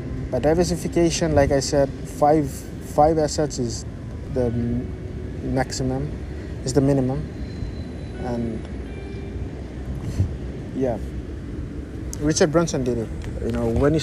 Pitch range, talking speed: 105-140 Hz, 105 wpm